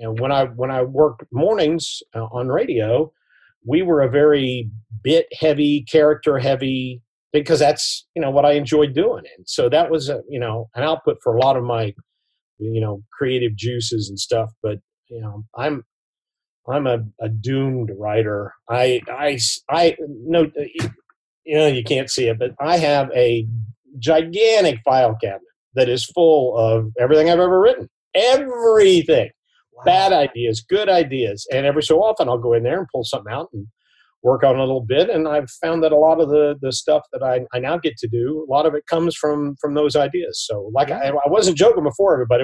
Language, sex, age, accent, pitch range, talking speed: English, male, 50-69, American, 120-165 Hz, 190 wpm